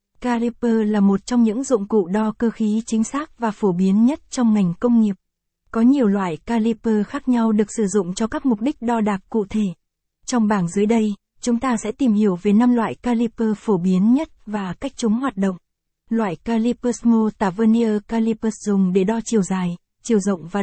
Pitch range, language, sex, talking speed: 205-240 Hz, Vietnamese, female, 205 wpm